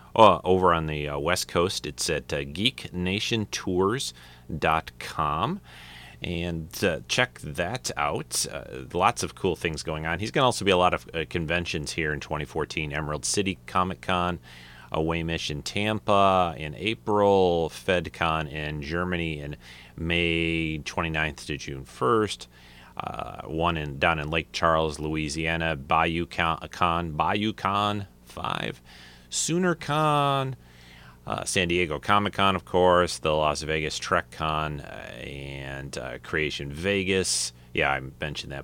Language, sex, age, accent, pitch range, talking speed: English, male, 30-49, American, 70-95 Hz, 140 wpm